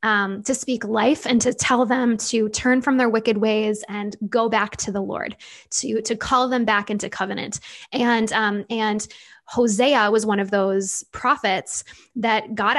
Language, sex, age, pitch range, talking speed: English, female, 10-29, 200-230 Hz, 180 wpm